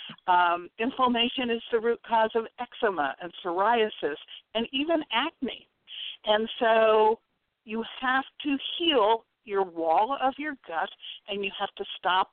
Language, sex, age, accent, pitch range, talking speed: English, female, 60-79, American, 175-250 Hz, 140 wpm